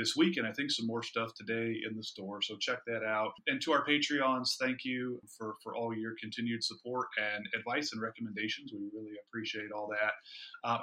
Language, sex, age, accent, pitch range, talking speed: English, male, 30-49, American, 110-130 Hz, 205 wpm